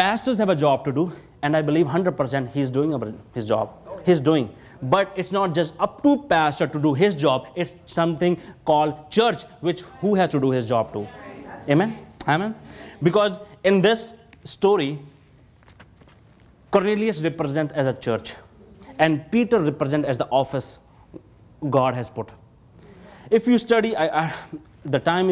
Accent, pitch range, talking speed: Indian, 140-185 Hz, 155 wpm